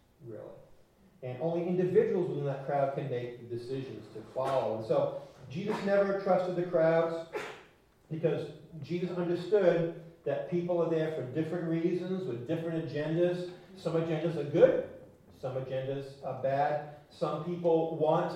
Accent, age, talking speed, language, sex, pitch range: American, 40-59, 140 wpm, English, male, 130-165 Hz